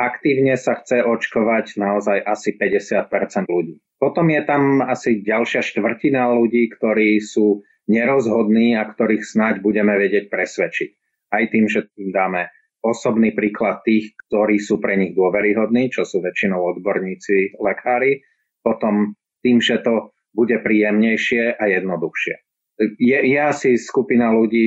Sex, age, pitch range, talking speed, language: male, 30-49, 100-115 Hz, 135 wpm, Slovak